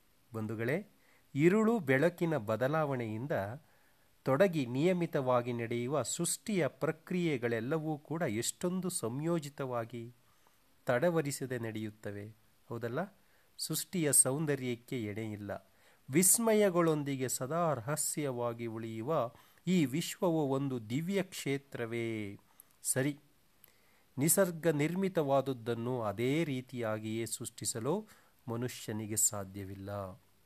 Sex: male